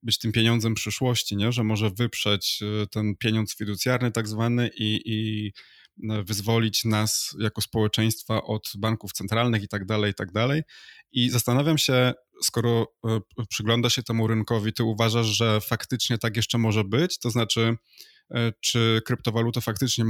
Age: 20-39